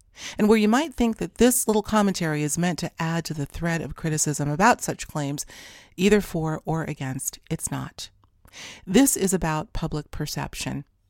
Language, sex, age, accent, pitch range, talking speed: English, female, 40-59, American, 150-195 Hz, 175 wpm